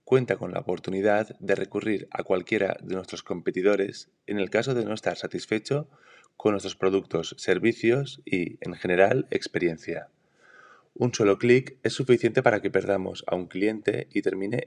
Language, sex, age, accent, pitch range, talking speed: Spanish, male, 20-39, Spanish, 95-120 Hz, 160 wpm